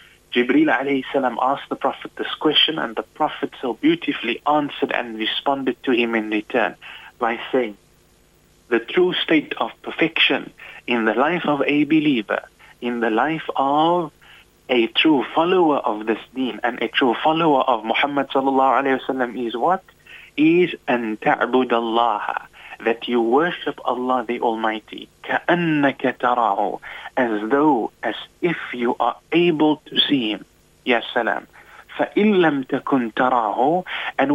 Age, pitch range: 30-49, 120-155 Hz